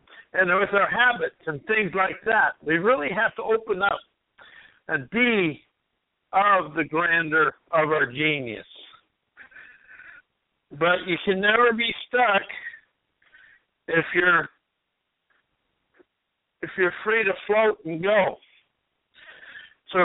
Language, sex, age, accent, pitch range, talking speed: English, male, 60-79, American, 160-220 Hz, 115 wpm